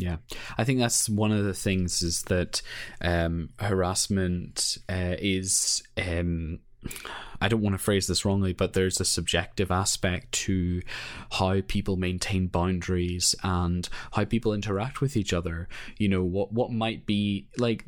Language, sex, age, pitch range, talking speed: English, male, 20-39, 95-115 Hz, 155 wpm